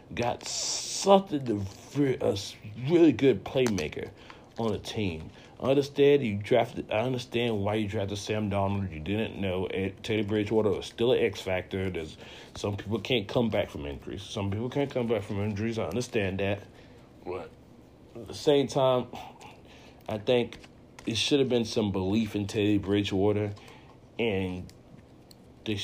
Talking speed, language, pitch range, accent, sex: 160 wpm, English, 100-130 Hz, American, male